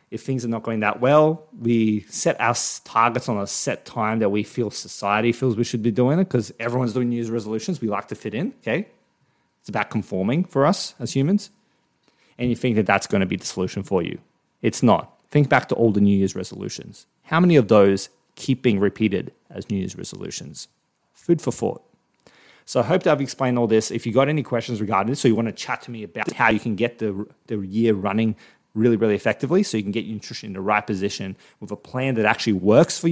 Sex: male